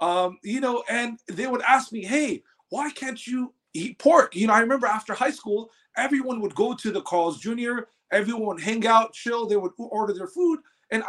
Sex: male